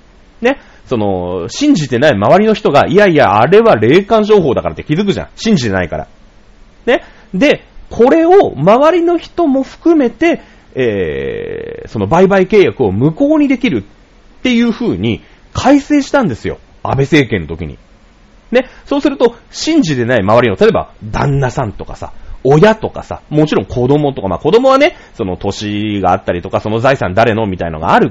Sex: male